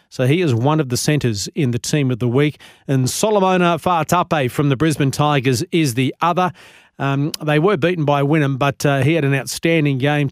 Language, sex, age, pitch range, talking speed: English, male, 40-59, 135-170 Hz, 210 wpm